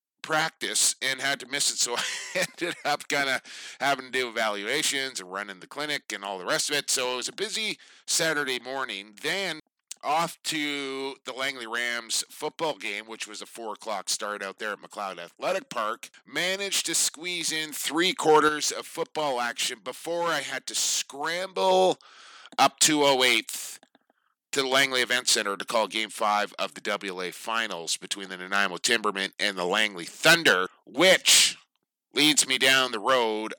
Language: English